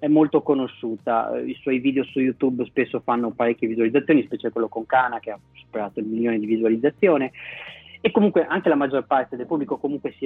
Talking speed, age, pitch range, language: 195 wpm, 20-39, 110-135 Hz, Italian